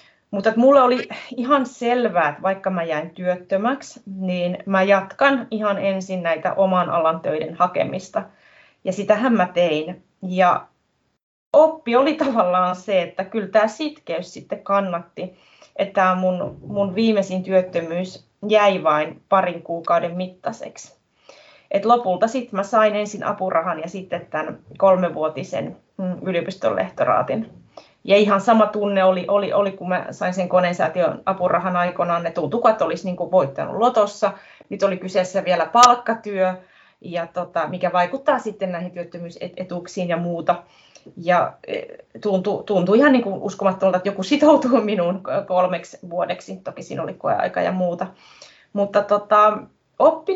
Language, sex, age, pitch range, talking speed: Finnish, female, 30-49, 180-220 Hz, 135 wpm